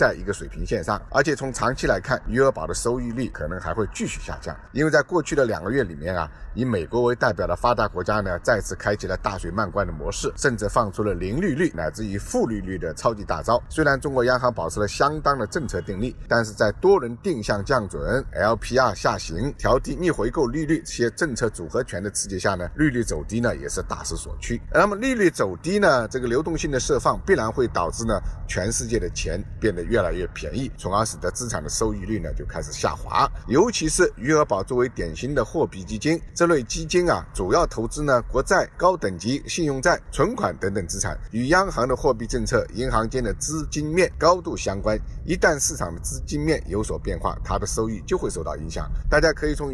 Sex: male